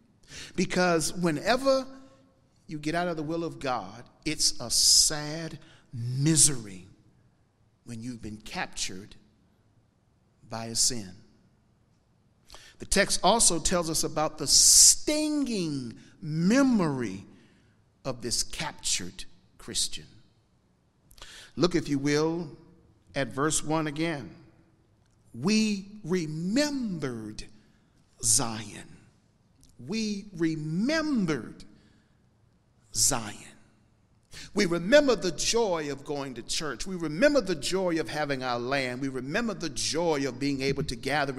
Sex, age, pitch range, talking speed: male, 50-69, 115-175 Hz, 105 wpm